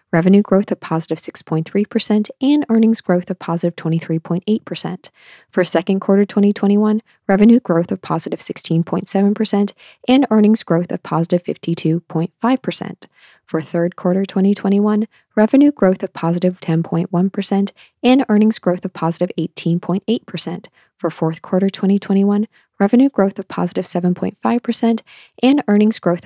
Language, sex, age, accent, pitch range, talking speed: English, female, 20-39, American, 175-215 Hz, 120 wpm